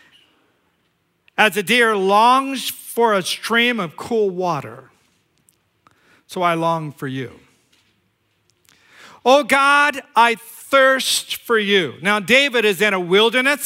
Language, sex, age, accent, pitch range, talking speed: English, male, 50-69, American, 185-240 Hz, 120 wpm